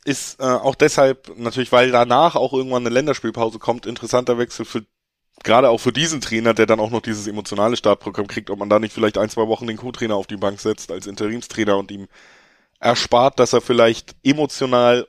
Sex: male